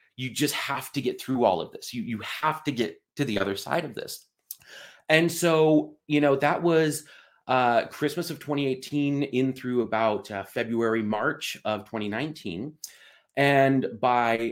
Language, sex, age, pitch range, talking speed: English, male, 30-49, 125-160 Hz, 155 wpm